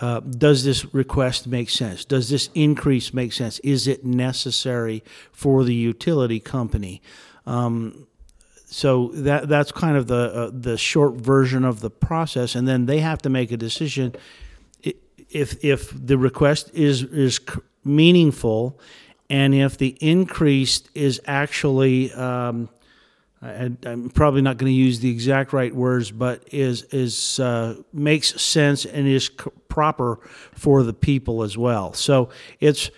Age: 50-69